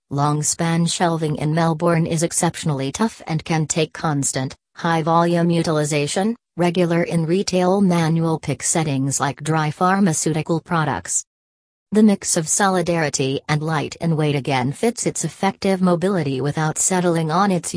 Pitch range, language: 150-175 Hz, English